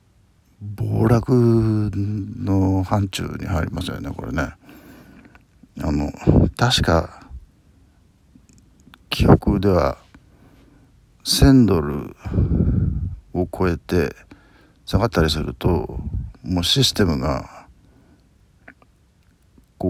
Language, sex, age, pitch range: Japanese, male, 50-69, 80-105 Hz